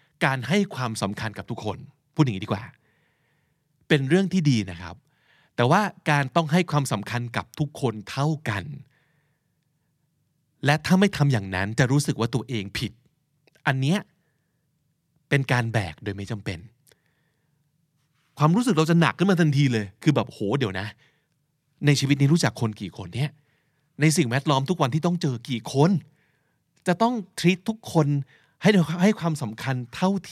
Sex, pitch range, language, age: male, 120-155 Hz, Thai, 20-39